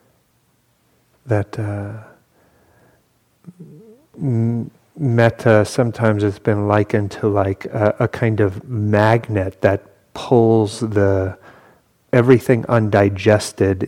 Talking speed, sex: 80 wpm, male